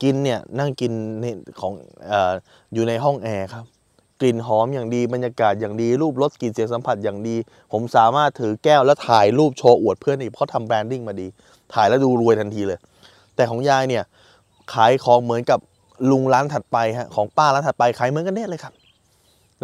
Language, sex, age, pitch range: Thai, male, 20-39, 120-155 Hz